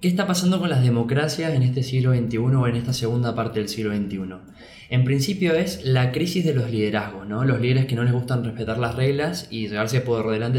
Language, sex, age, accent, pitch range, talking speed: Spanish, male, 20-39, Argentinian, 115-155 Hz, 230 wpm